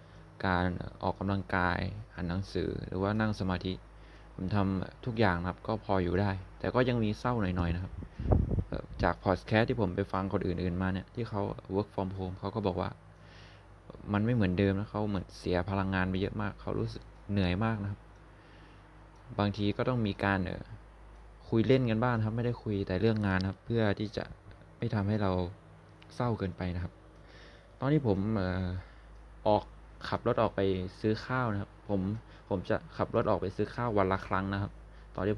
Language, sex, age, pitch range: Thai, male, 20-39, 90-105 Hz